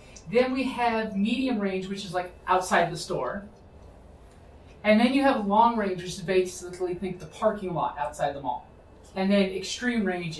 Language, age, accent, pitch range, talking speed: English, 30-49, American, 160-215 Hz, 180 wpm